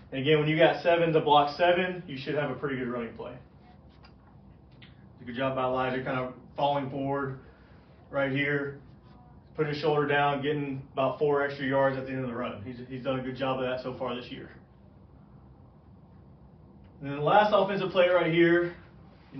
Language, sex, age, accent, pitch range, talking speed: English, male, 30-49, American, 135-165 Hz, 200 wpm